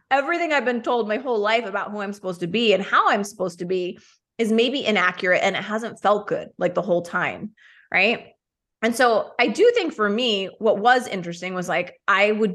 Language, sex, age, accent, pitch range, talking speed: English, female, 20-39, American, 185-230 Hz, 220 wpm